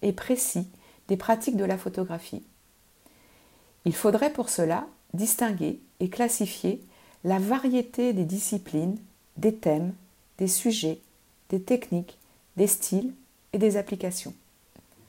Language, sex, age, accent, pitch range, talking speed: French, female, 50-69, French, 170-240 Hz, 110 wpm